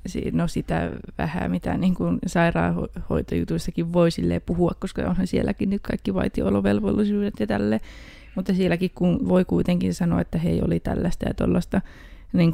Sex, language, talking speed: female, Finnish, 145 wpm